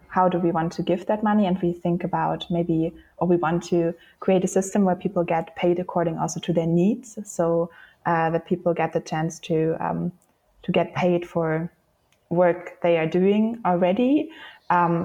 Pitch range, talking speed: 160-180 Hz, 190 wpm